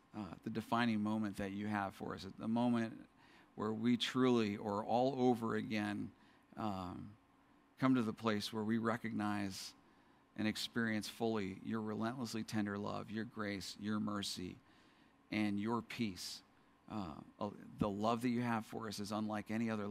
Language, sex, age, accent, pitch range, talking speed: English, male, 50-69, American, 100-115 Hz, 155 wpm